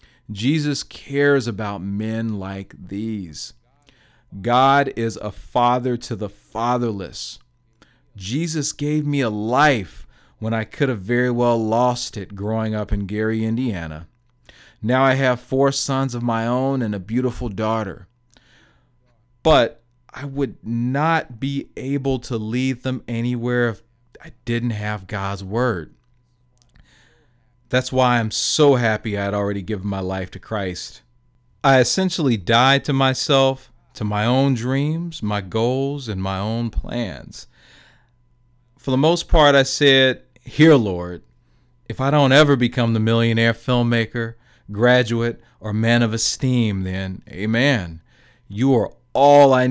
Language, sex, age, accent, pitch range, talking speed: English, male, 40-59, American, 110-130 Hz, 140 wpm